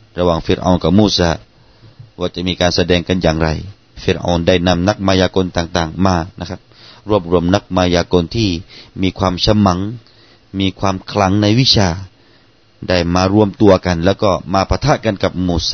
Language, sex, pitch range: Thai, male, 90-115 Hz